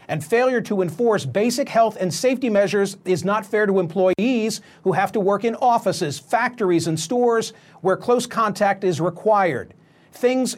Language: English